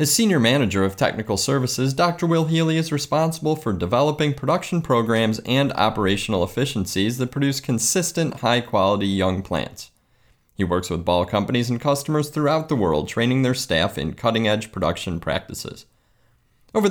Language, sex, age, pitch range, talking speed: English, male, 30-49, 95-145 Hz, 150 wpm